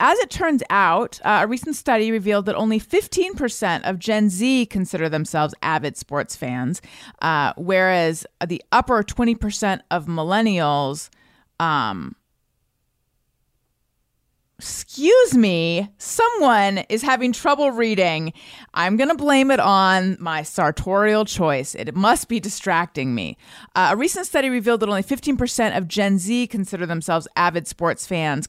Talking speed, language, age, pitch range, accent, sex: 135 wpm, English, 30-49, 170-225 Hz, American, female